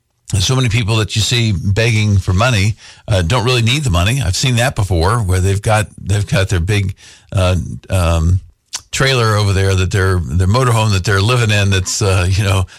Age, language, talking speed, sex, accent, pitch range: 50-69, English, 200 wpm, male, American, 95-110 Hz